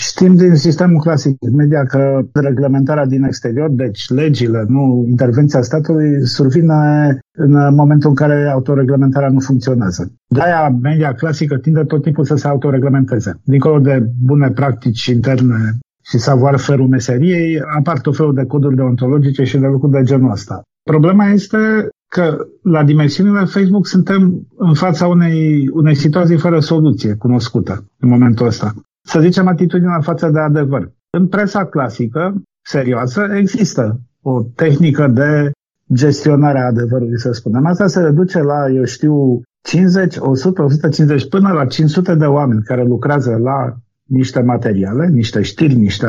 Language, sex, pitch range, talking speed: Romanian, male, 125-160 Hz, 145 wpm